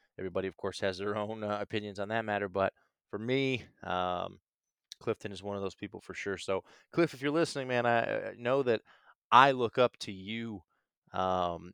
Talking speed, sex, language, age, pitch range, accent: 200 wpm, male, English, 20-39, 95-115 Hz, American